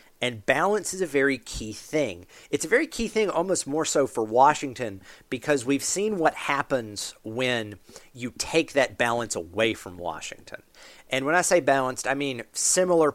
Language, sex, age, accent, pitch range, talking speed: English, male, 40-59, American, 110-140 Hz, 175 wpm